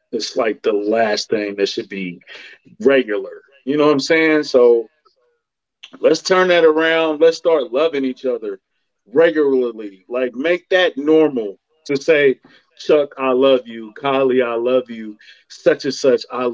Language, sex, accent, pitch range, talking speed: English, male, American, 130-175 Hz, 155 wpm